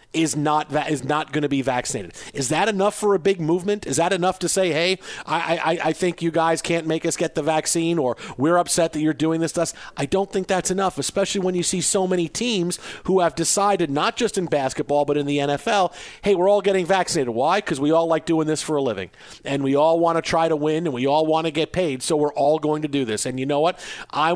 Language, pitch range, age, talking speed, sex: English, 150-180 Hz, 40-59, 265 wpm, male